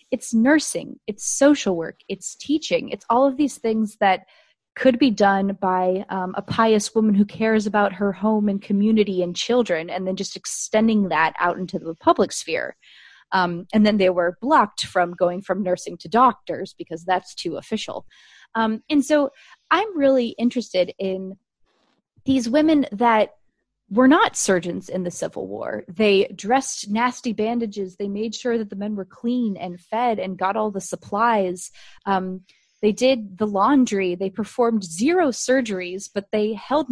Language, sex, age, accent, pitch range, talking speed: English, female, 20-39, American, 190-240 Hz, 170 wpm